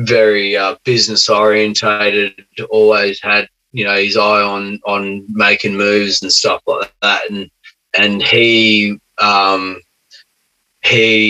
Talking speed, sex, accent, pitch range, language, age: 120 wpm, male, Australian, 100-130 Hz, English, 20-39